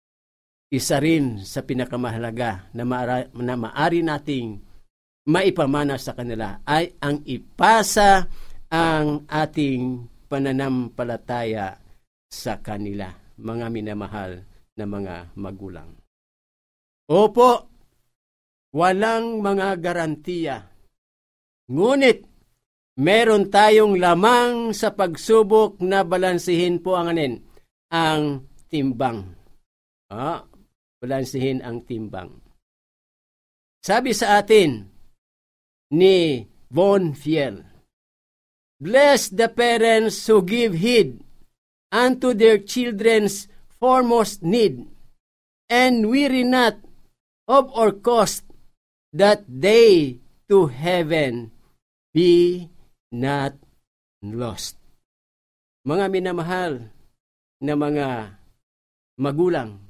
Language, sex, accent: Filipino, male, native